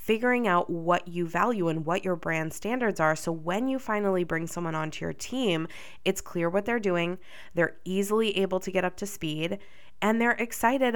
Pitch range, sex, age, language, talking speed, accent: 170-215 Hz, female, 20-39, English, 195 wpm, American